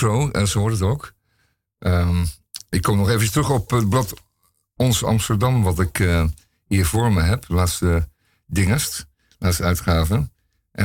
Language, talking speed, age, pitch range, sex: Dutch, 155 wpm, 50-69, 90-115 Hz, male